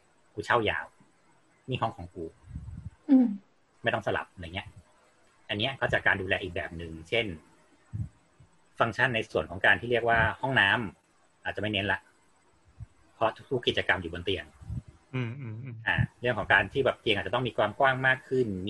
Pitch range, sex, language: 95-120 Hz, male, Thai